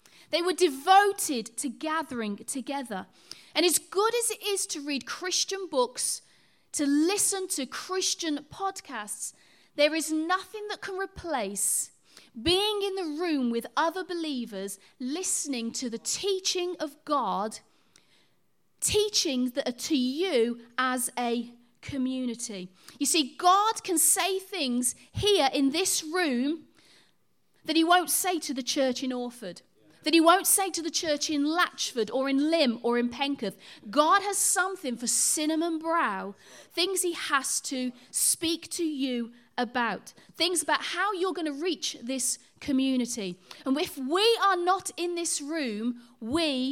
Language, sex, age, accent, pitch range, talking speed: English, female, 30-49, British, 245-355 Hz, 145 wpm